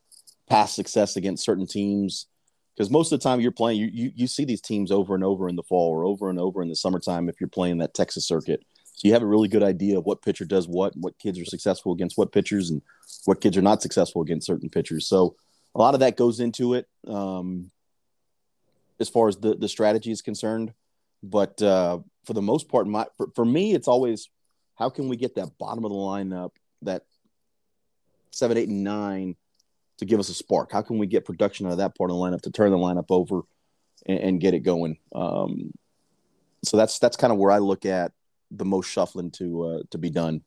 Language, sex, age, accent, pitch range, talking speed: English, male, 30-49, American, 90-105 Hz, 230 wpm